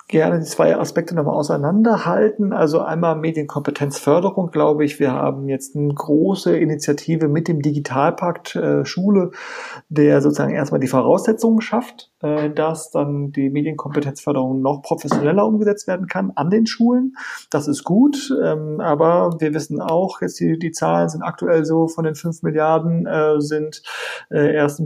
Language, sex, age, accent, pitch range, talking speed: German, male, 30-49, German, 145-185 Hz, 150 wpm